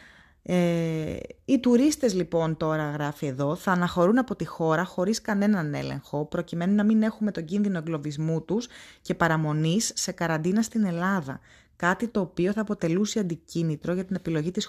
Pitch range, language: 160-210 Hz, Greek